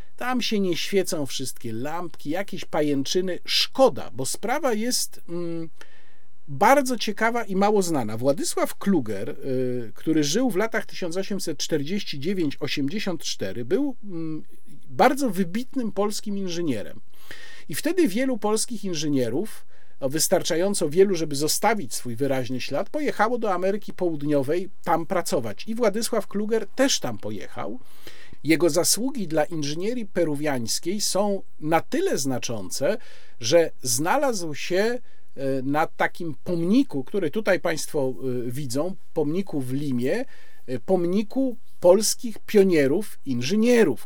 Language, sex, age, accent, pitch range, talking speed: Polish, male, 50-69, native, 145-215 Hz, 110 wpm